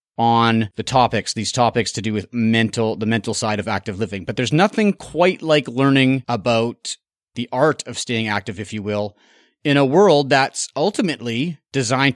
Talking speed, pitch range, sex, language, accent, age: 180 wpm, 115-145 Hz, male, English, American, 30-49